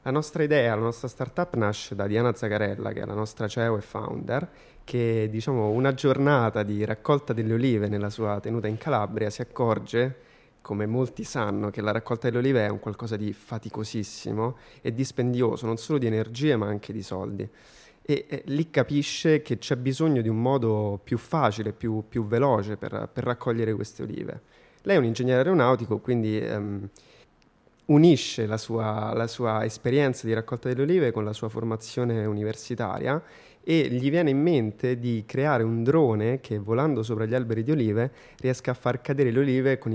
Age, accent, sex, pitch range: 20-39, native, male, 110-130 Hz